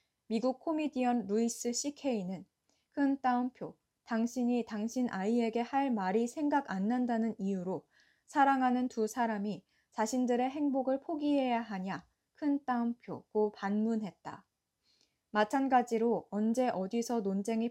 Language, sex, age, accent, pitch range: Korean, female, 20-39, native, 205-255 Hz